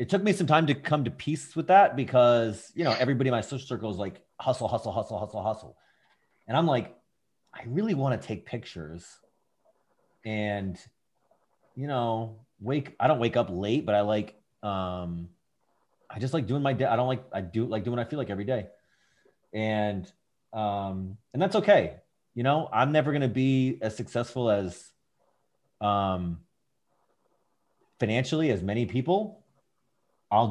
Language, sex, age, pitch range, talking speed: English, male, 30-49, 105-145 Hz, 170 wpm